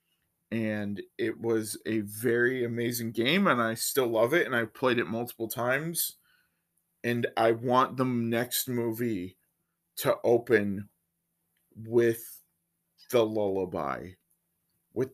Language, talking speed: English, 120 wpm